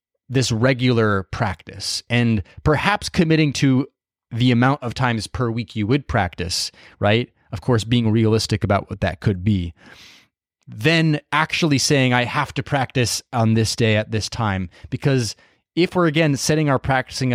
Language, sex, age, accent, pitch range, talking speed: English, male, 20-39, American, 110-145 Hz, 160 wpm